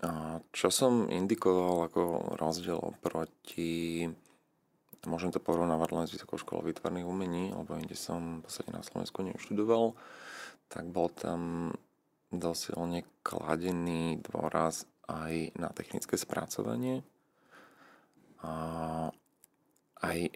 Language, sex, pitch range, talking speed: Slovak, male, 80-90 Hz, 100 wpm